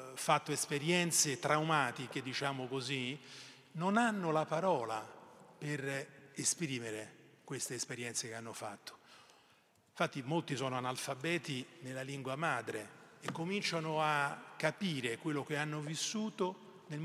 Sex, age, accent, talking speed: male, 40-59, native, 115 wpm